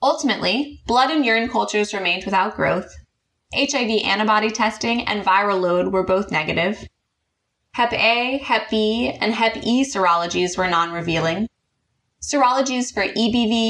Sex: female